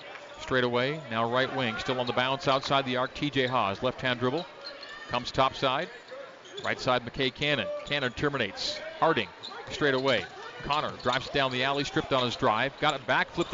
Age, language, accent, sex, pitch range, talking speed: 40-59, English, American, male, 130-150 Hz, 180 wpm